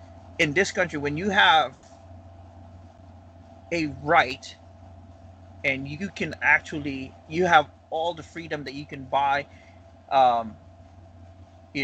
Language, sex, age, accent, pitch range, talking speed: English, male, 30-49, American, 95-150 Hz, 115 wpm